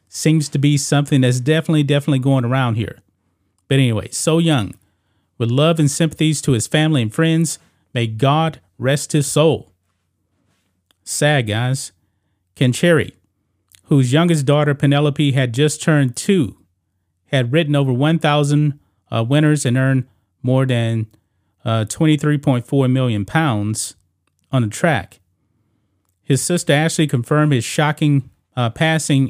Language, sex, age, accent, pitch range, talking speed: English, male, 40-59, American, 100-150 Hz, 135 wpm